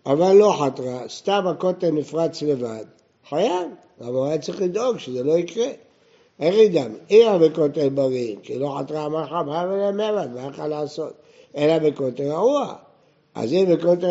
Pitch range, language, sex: 145-200 Hz, Hebrew, male